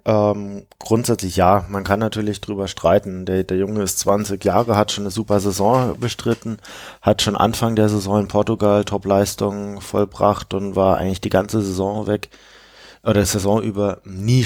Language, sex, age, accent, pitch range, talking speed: German, male, 20-39, German, 100-110 Hz, 165 wpm